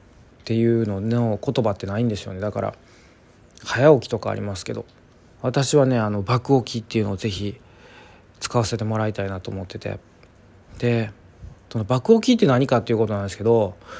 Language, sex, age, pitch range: Japanese, male, 20-39, 100-135 Hz